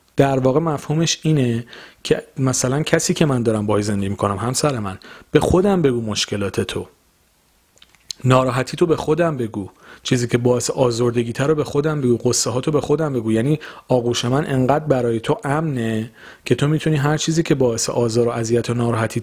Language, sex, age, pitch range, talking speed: Persian, male, 40-59, 115-155 Hz, 185 wpm